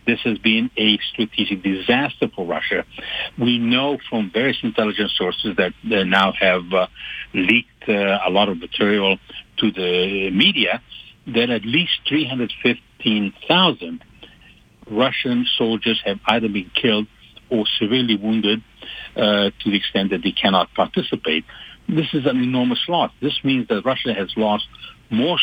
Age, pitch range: 60-79, 105-130 Hz